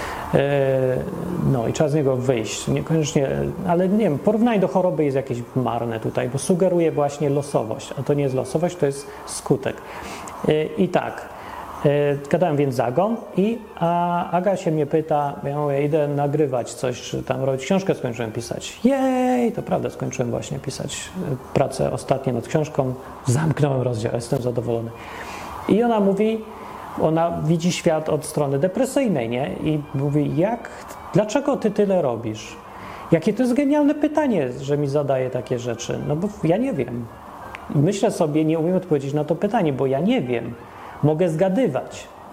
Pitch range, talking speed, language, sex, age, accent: 130-175 Hz, 160 wpm, Polish, male, 30-49, native